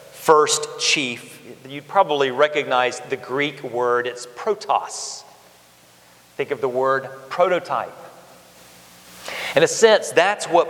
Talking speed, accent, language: 110 wpm, American, English